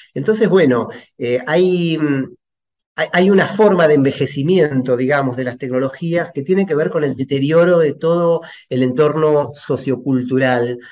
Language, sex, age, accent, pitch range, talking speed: Spanish, male, 30-49, Argentinian, 125-160 Hz, 135 wpm